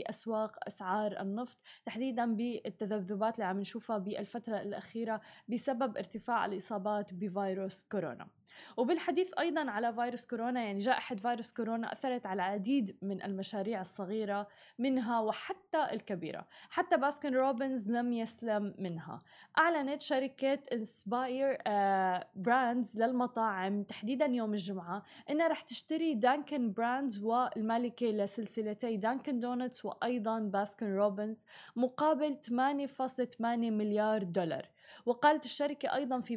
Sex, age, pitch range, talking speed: female, 20-39, 210-255 Hz, 110 wpm